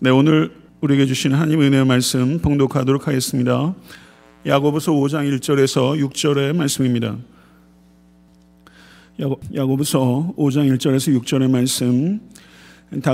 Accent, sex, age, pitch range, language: native, male, 40-59, 125-140 Hz, Korean